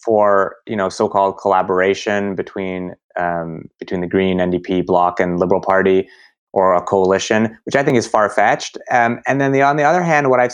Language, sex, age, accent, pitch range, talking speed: English, male, 30-49, American, 95-110 Hz, 190 wpm